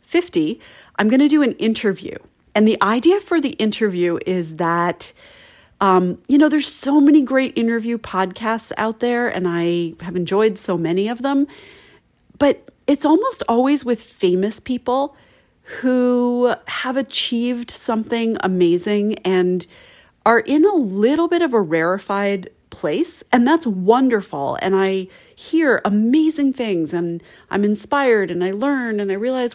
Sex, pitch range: female, 190-265 Hz